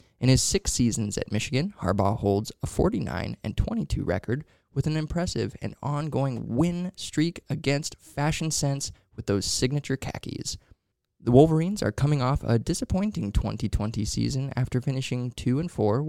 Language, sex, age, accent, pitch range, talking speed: English, male, 20-39, American, 110-140 Hz, 140 wpm